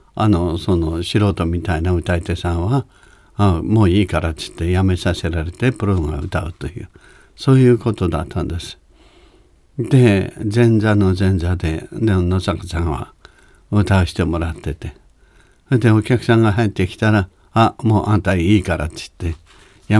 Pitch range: 85-110 Hz